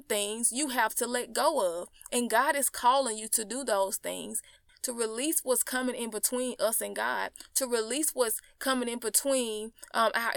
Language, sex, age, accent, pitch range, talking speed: English, female, 20-39, American, 210-290 Hz, 190 wpm